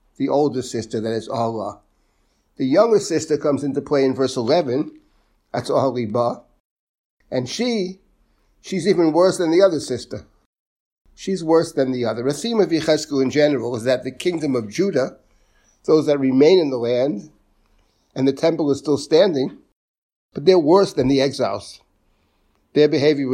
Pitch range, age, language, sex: 120-150 Hz, 60-79, English, male